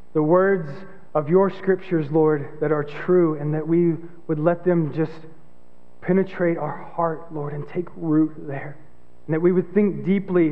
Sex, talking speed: male, 170 wpm